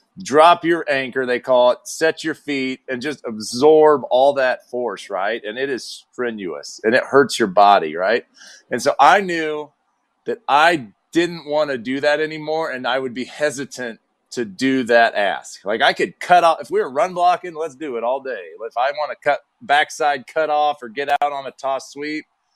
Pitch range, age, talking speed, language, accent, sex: 125-160 Hz, 30-49, 205 wpm, English, American, male